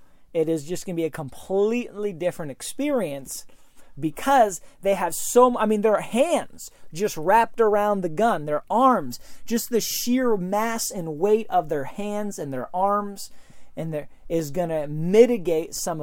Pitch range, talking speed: 155-230 Hz, 160 wpm